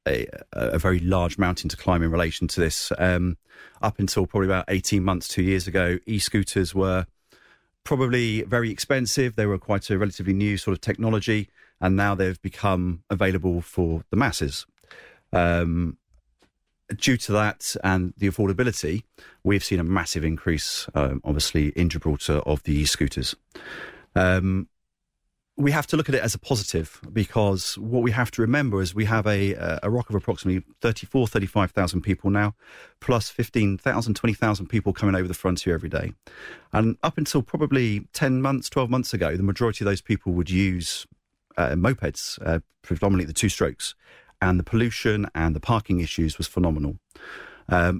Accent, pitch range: British, 90-110 Hz